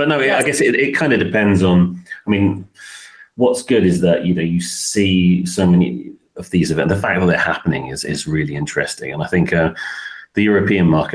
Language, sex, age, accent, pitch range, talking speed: English, male, 30-49, British, 80-95 Hz, 225 wpm